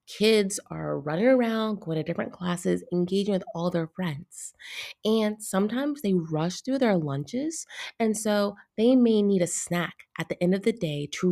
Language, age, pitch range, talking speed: English, 30-49, 165-220 Hz, 180 wpm